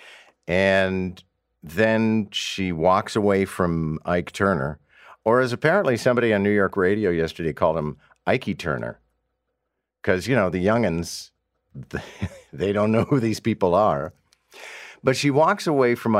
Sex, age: male, 50-69